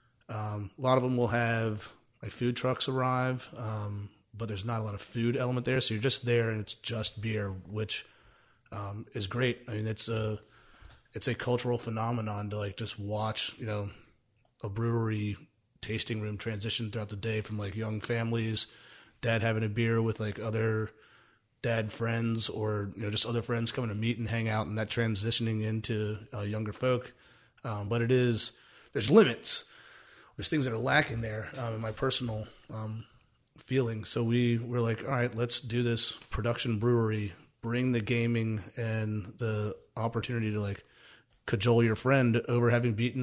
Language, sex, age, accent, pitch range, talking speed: English, male, 30-49, American, 110-120 Hz, 180 wpm